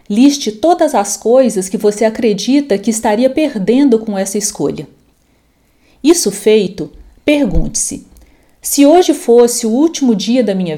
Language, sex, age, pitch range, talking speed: Portuguese, female, 40-59, 200-255 Hz, 140 wpm